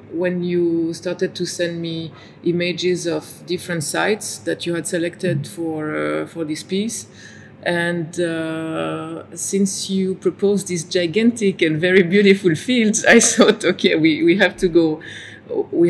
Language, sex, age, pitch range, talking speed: Italian, female, 30-49, 150-175 Hz, 145 wpm